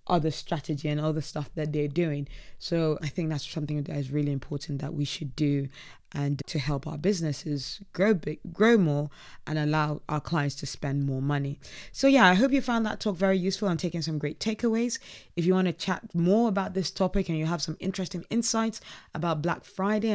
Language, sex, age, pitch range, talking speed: English, female, 20-39, 150-185 Hz, 210 wpm